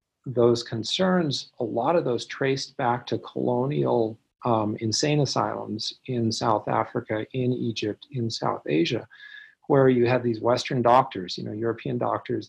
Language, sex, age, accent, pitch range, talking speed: English, male, 40-59, American, 115-135 Hz, 150 wpm